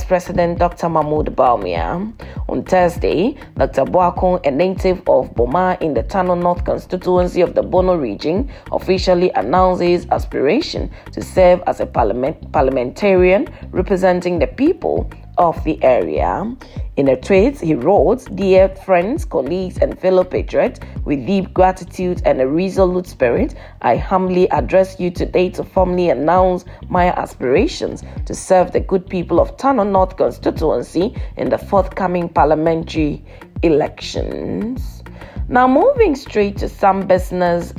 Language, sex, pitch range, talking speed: English, female, 175-190 Hz, 135 wpm